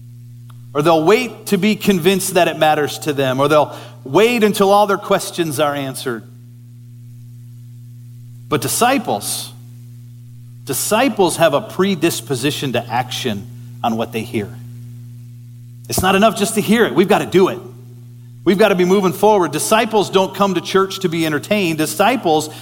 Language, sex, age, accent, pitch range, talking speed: English, male, 40-59, American, 120-180 Hz, 155 wpm